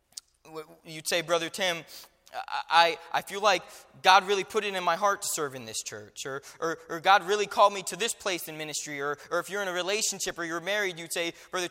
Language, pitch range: English, 160-195 Hz